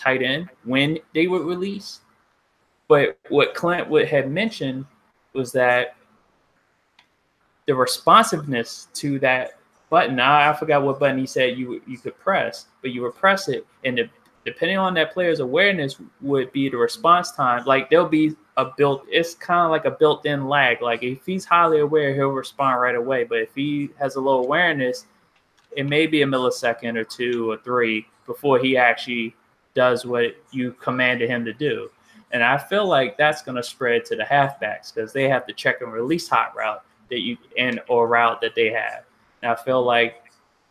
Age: 20-39